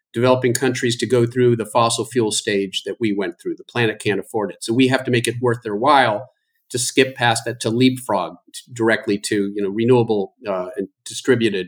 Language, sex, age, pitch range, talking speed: English, male, 50-69, 120-150 Hz, 210 wpm